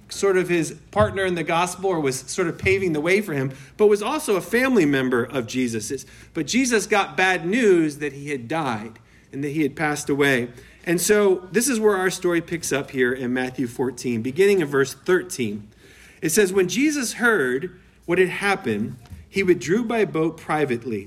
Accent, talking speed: American, 195 wpm